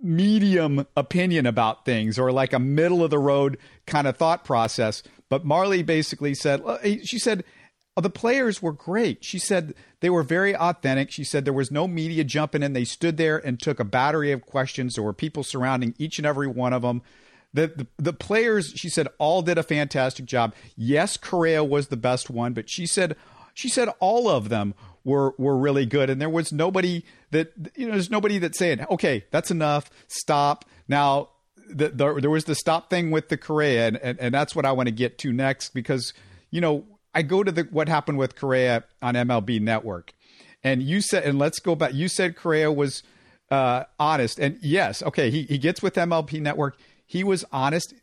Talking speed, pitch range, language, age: 205 wpm, 130-165 Hz, English, 50-69